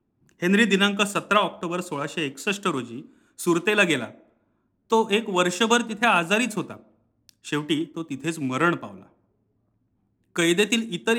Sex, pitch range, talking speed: male, 135-195 Hz, 120 wpm